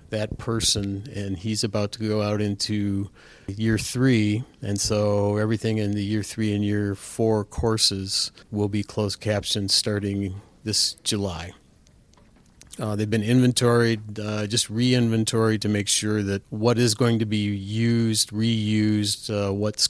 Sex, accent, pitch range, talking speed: male, American, 100-110 Hz, 150 wpm